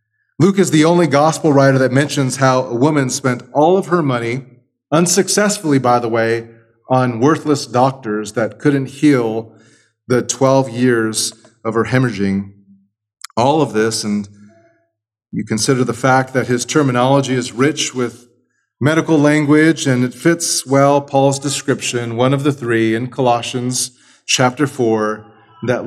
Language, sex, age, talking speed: English, male, 40-59, 145 wpm